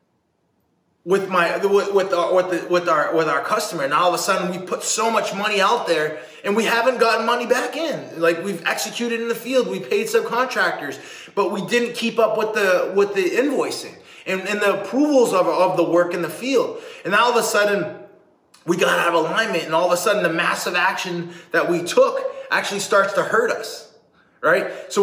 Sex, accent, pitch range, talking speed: male, American, 170-235 Hz, 210 wpm